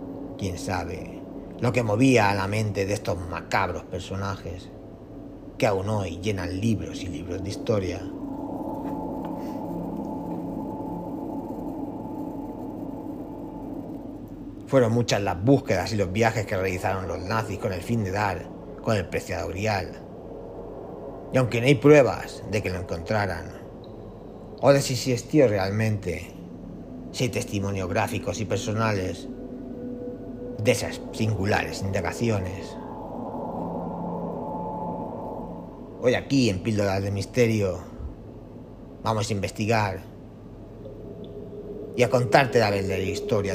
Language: Spanish